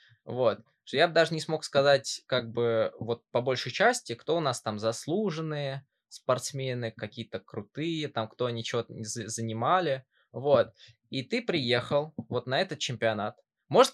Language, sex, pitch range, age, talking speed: Russian, male, 115-145 Hz, 20-39, 160 wpm